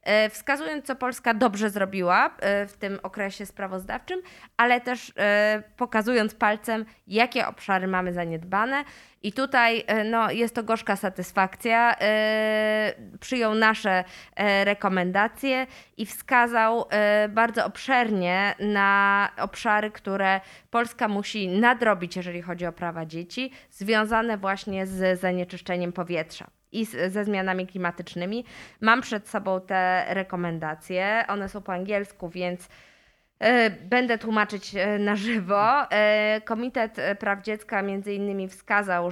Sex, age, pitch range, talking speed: female, 20-39, 185-215 Hz, 105 wpm